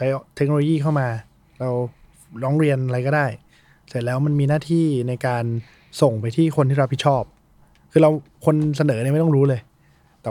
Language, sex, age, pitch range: Thai, male, 20-39, 125-150 Hz